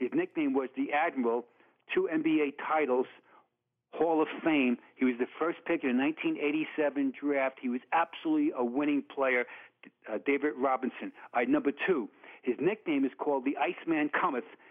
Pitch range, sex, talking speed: 125-160 Hz, male, 165 wpm